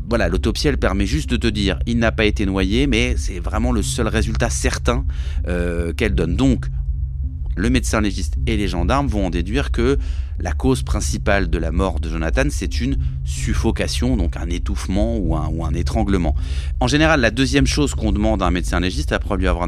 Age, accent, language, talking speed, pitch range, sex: 30-49, French, French, 200 wpm, 70-95 Hz, male